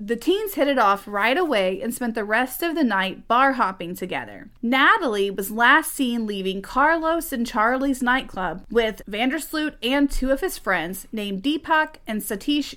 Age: 30-49